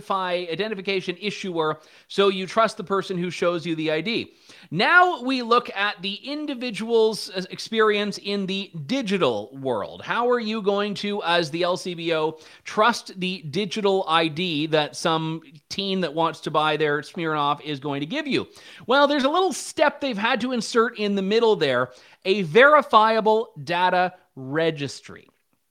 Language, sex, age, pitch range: English, male, 30-49, 170-225 Hz